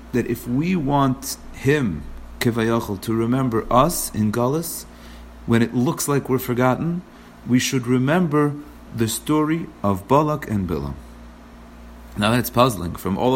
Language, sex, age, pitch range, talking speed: English, male, 40-59, 95-130 Hz, 140 wpm